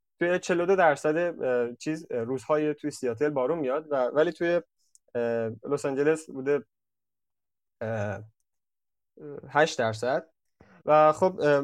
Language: Persian